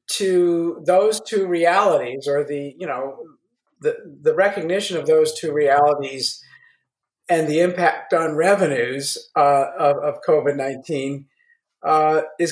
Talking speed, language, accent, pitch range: 120 wpm, English, American, 150-210 Hz